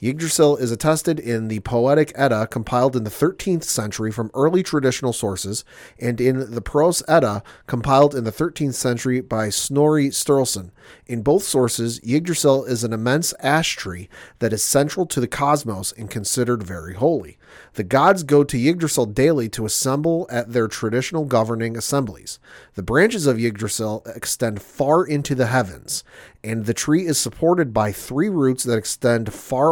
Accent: American